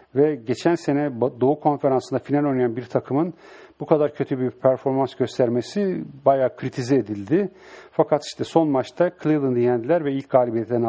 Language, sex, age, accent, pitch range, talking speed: English, male, 50-69, Turkish, 120-150 Hz, 150 wpm